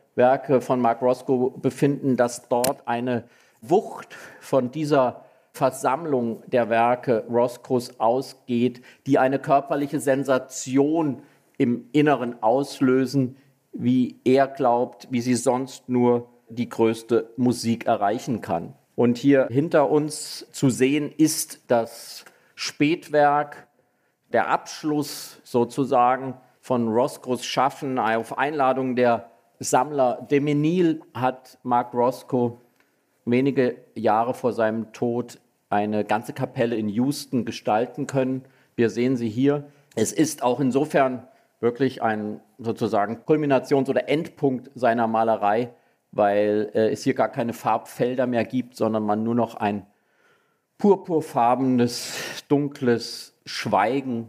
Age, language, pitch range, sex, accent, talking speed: 50-69, German, 120-140 Hz, male, German, 115 wpm